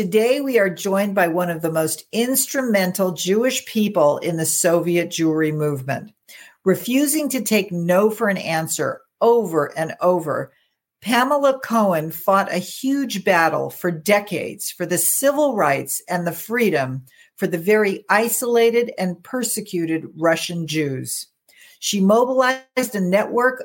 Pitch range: 170-230 Hz